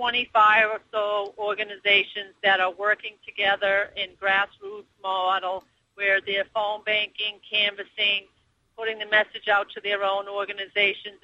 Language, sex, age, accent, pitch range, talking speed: English, female, 50-69, American, 195-215 Hz, 130 wpm